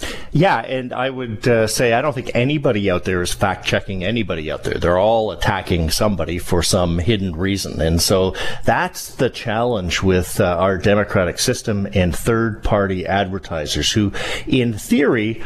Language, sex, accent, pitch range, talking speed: English, male, American, 95-115 Hz, 160 wpm